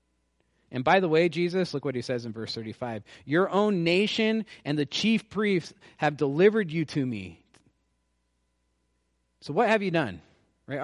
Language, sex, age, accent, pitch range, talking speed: English, male, 40-59, American, 95-140 Hz, 165 wpm